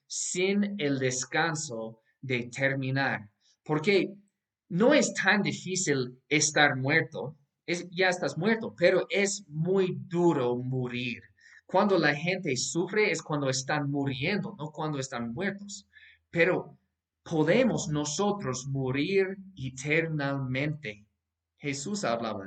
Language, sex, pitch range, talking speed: Spanish, male, 135-195 Hz, 105 wpm